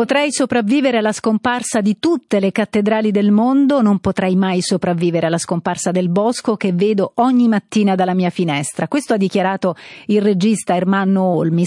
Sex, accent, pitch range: female, native, 175-235 Hz